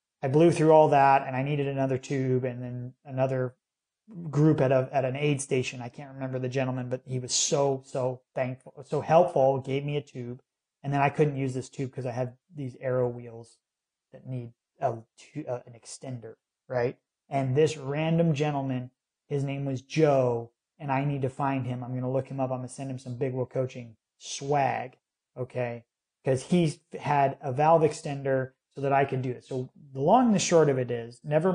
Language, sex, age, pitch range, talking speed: English, male, 30-49, 130-150 Hz, 205 wpm